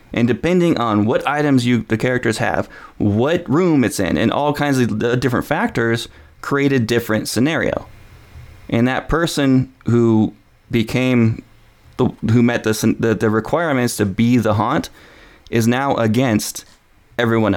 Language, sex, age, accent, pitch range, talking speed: English, male, 20-39, American, 110-130 Hz, 145 wpm